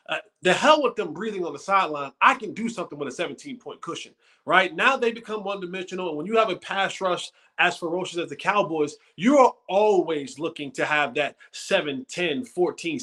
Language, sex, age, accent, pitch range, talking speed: English, male, 20-39, American, 165-235 Hz, 205 wpm